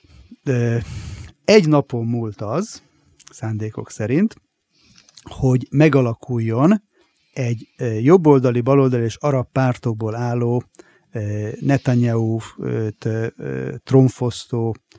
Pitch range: 115-135 Hz